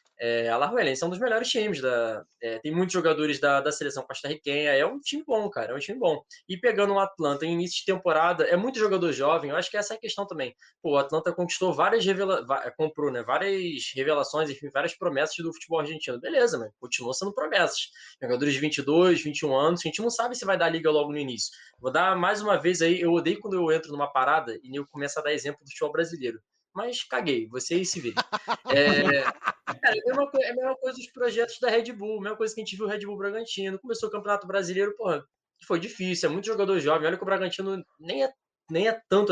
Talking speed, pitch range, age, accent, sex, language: 240 wpm, 150-215 Hz, 20-39, Brazilian, male, Portuguese